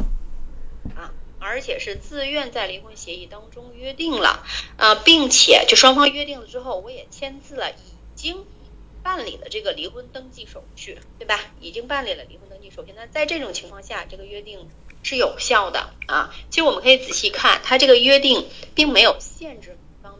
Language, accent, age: Chinese, native, 30-49